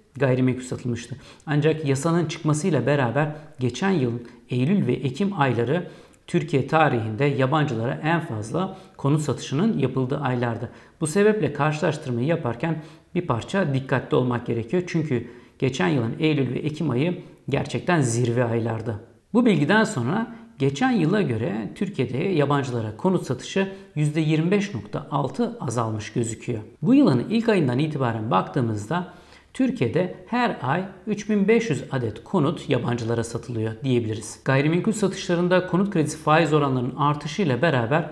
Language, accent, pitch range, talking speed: Turkish, native, 125-190 Hz, 120 wpm